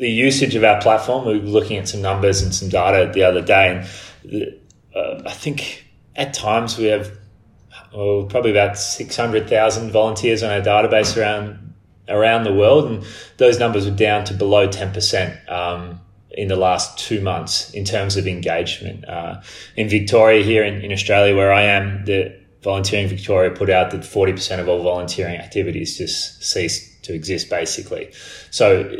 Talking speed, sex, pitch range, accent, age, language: 170 wpm, male, 95-110 Hz, Australian, 20-39, English